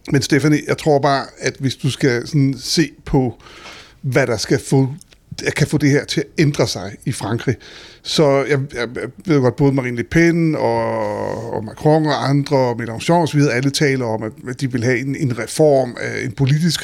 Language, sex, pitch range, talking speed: Danish, male, 125-150 Hz, 195 wpm